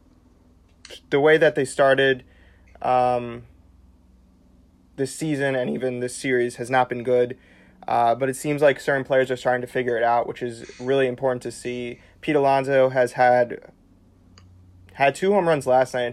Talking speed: 165 wpm